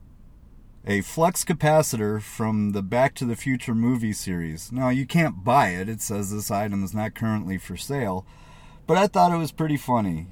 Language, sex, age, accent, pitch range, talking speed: English, male, 40-59, American, 105-140 Hz, 185 wpm